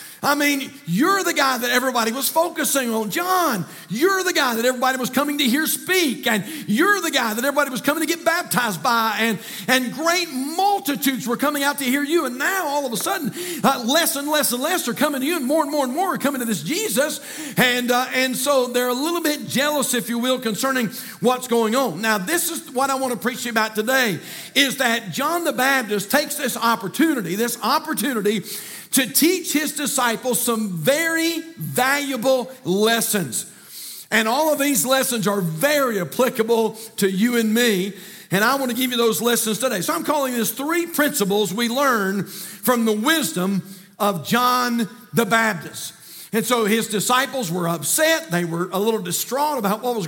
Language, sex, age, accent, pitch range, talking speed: English, male, 50-69, American, 220-285 Hz, 200 wpm